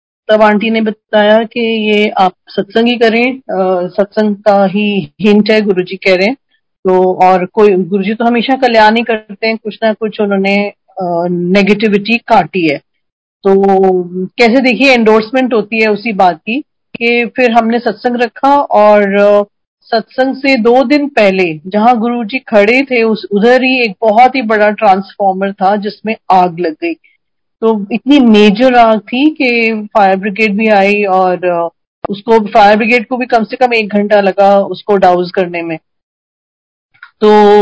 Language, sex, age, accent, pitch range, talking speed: Hindi, female, 40-59, native, 195-235 Hz, 160 wpm